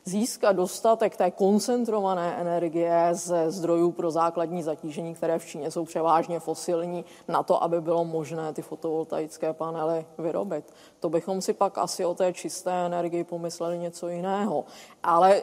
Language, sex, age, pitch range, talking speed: Czech, female, 20-39, 170-210 Hz, 150 wpm